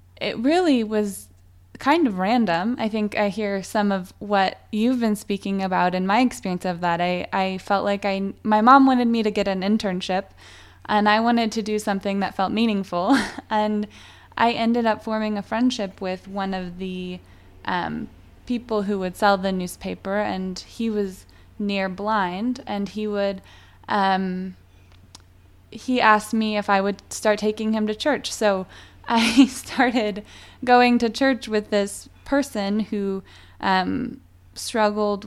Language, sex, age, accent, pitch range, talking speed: English, female, 20-39, American, 185-220 Hz, 160 wpm